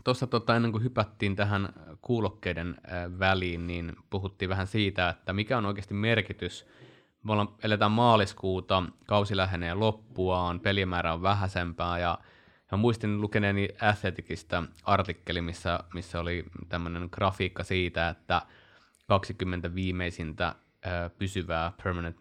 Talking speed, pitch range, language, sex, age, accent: 115 wpm, 90-105 Hz, Finnish, male, 20-39, native